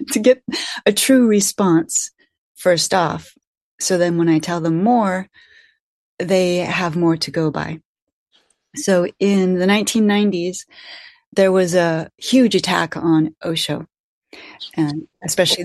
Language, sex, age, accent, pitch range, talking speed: English, female, 30-49, American, 170-225 Hz, 125 wpm